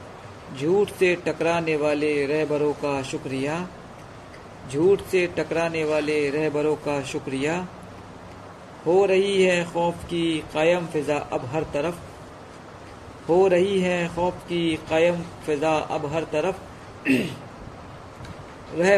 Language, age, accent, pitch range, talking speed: Hindi, 50-69, native, 150-175 Hz, 110 wpm